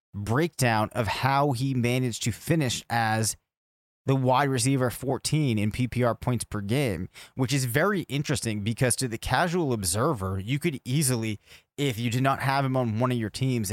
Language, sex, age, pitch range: English, male, 20-39, 110-135 Hz